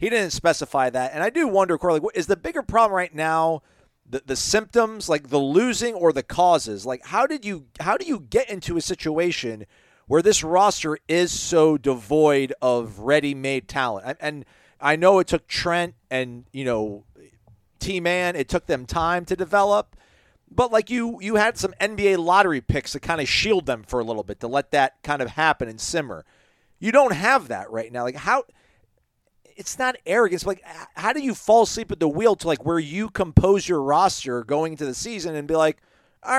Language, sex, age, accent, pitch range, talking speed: English, male, 40-59, American, 140-200 Hz, 200 wpm